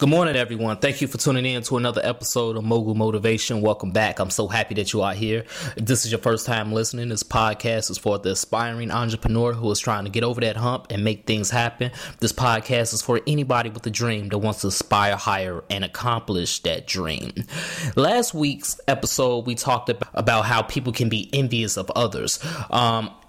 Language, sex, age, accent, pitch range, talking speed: English, male, 20-39, American, 110-140 Hz, 205 wpm